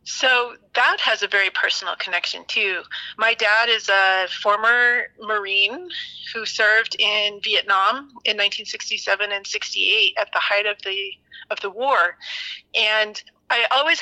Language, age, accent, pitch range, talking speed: English, 30-49, American, 200-240 Hz, 140 wpm